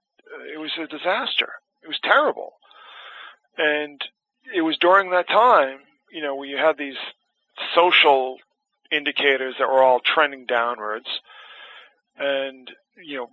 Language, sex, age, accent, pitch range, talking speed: English, male, 40-59, American, 125-155 Hz, 130 wpm